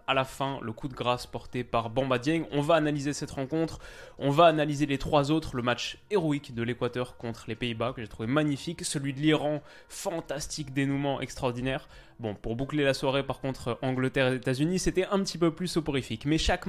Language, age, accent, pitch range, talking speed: French, 20-39, French, 120-155 Hz, 210 wpm